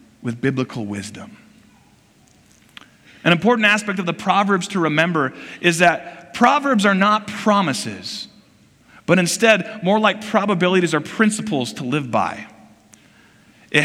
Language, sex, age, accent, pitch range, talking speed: English, male, 40-59, American, 160-215 Hz, 120 wpm